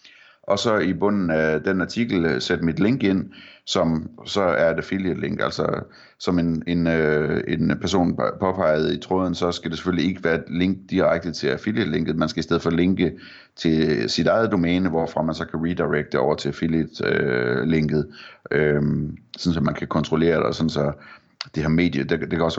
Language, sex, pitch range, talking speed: Danish, male, 75-90 Hz, 190 wpm